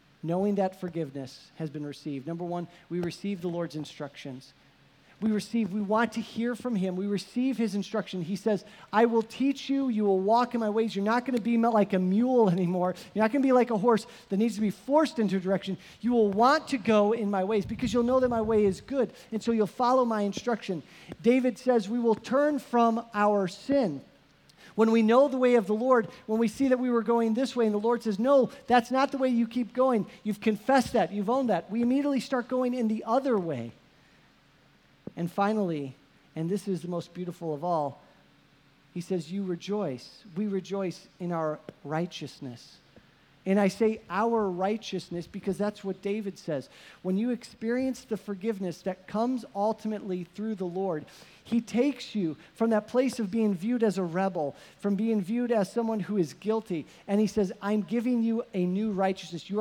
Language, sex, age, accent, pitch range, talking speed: English, male, 40-59, American, 185-235 Hz, 205 wpm